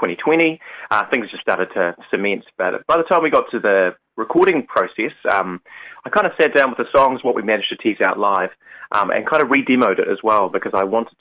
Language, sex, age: English, male, 30-49